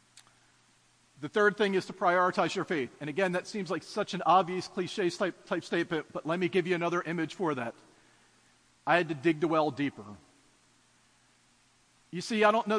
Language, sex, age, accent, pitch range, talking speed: English, male, 40-59, American, 160-200 Hz, 190 wpm